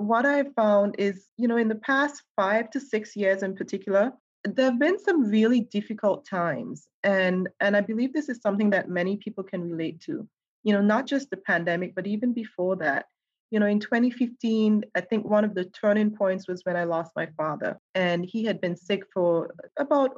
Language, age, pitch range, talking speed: English, 30-49, 185-215 Hz, 205 wpm